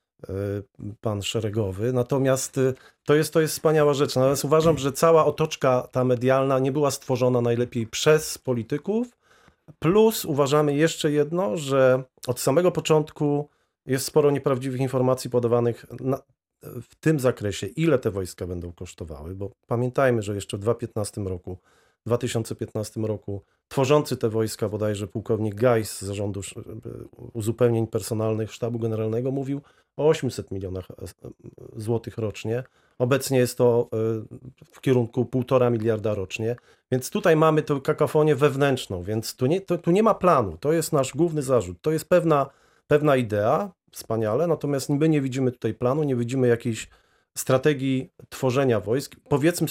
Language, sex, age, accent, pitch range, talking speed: Polish, male, 40-59, native, 115-150 Hz, 140 wpm